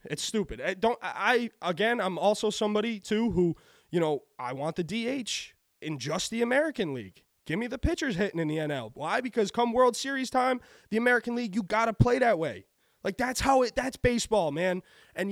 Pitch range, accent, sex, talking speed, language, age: 150-225 Hz, American, male, 210 wpm, English, 20-39